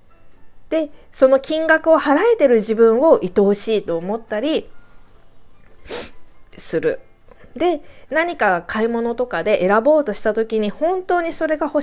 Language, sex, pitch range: Japanese, female, 190-310 Hz